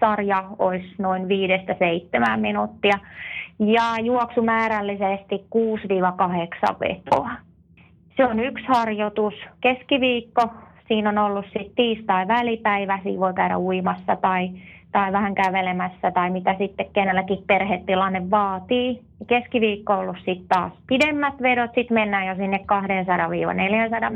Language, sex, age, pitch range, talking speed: Finnish, female, 30-49, 190-225 Hz, 115 wpm